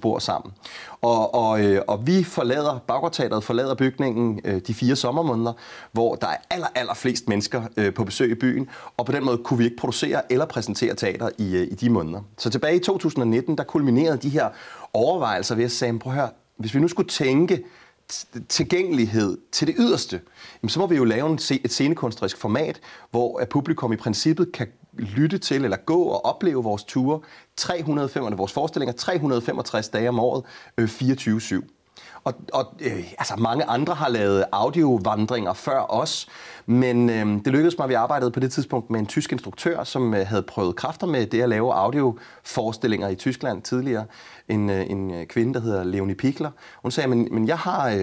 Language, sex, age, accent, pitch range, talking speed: Danish, male, 30-49, native, 110-140 Hz, 190 wpm